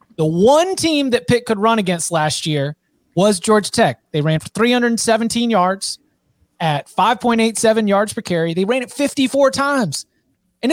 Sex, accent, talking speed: male, American, 160 wpm